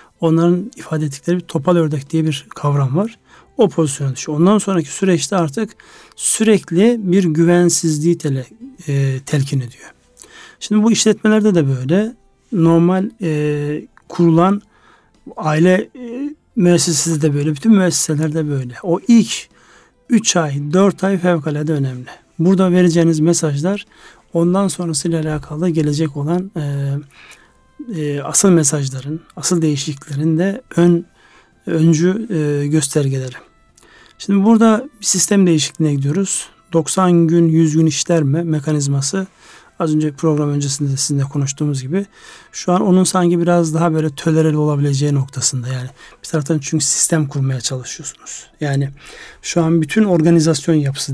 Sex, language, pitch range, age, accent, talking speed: male, Turkish, 145-185 Hz, 60-79, native, 130 wpm